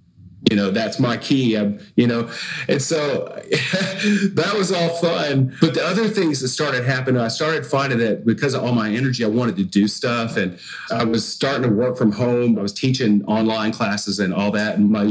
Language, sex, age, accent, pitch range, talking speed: English, male, 40-59, American, 115-145 Hz, 205 wpm